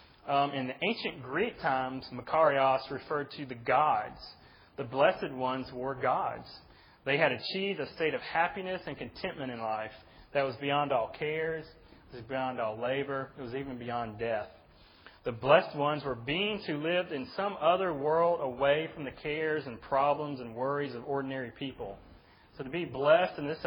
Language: English